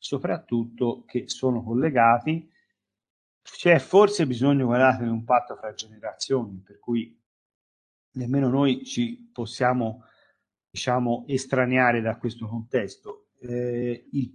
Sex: male